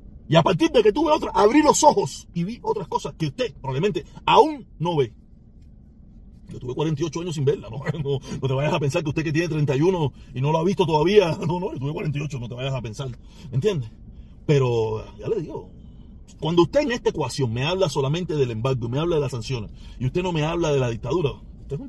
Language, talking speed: Spanish, 235 wpm